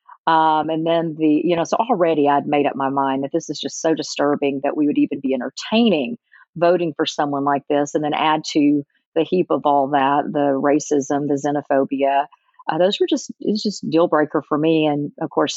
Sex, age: female, 40-59